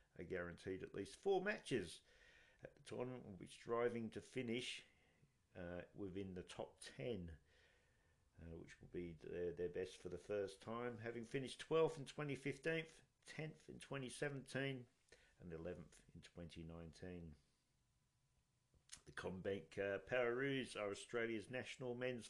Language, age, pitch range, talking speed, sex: English, 50-69, 90-130 Hz, 130 wpm, male